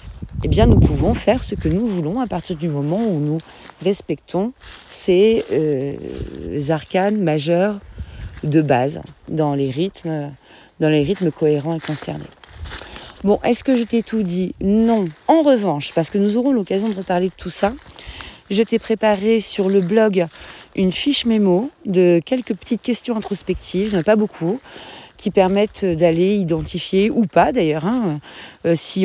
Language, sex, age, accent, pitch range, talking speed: French, female, 40-59, French, 170-215 Hz, 155 wpm